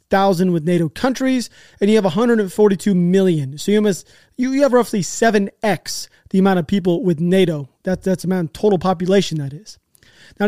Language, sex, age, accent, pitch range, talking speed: English, male, 30-49, American, 180-220 Hz, 190 wpm